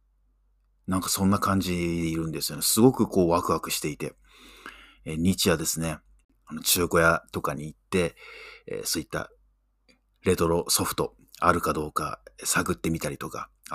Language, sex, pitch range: Japanese, male, 85-135 Hz